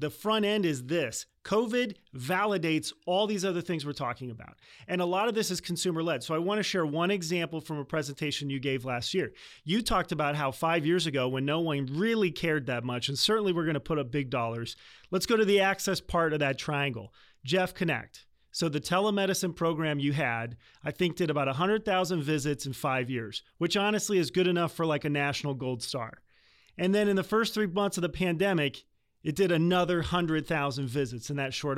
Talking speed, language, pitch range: 215 wpm, English, 145-190 Hz